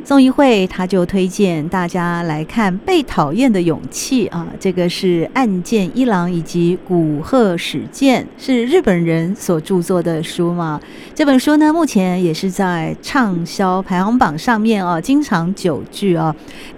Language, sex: Chinese, female